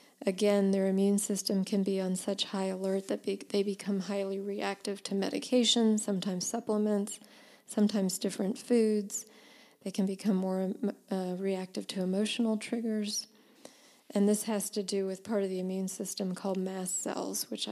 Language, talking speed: English, 165 wpm